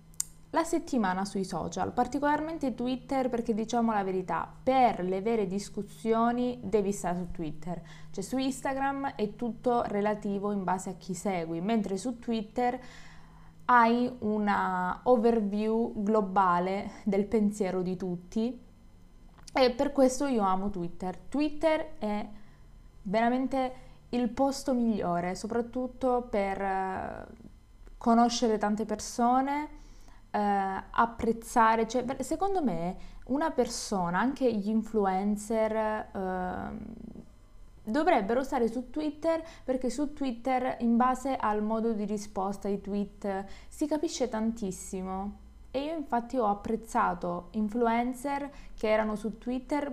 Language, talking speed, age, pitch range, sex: Italian, 115 wpm, 20-39, 200-250 Hz, female